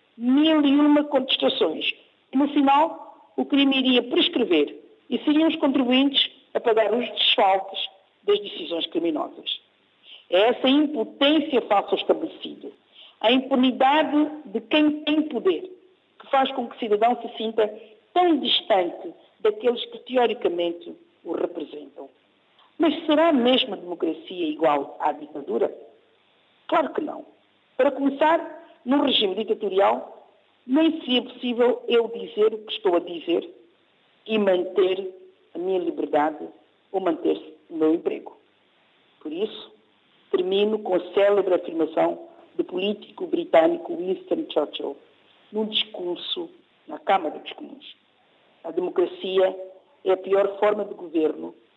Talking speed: 125 wpm